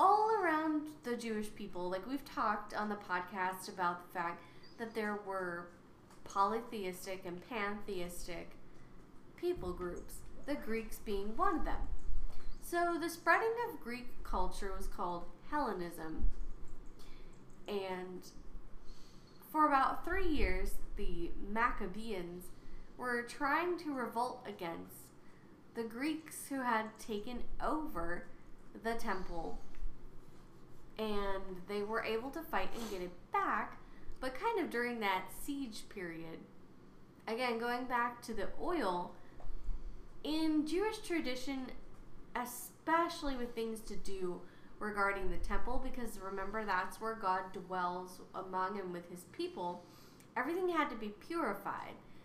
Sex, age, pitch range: female, 20-39, 185-260 Hz